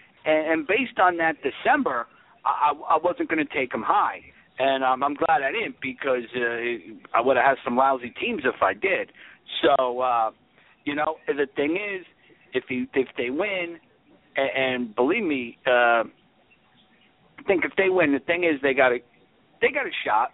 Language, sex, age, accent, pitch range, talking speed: English, male, 50-69, American, 130-160 Hz, 175 wpm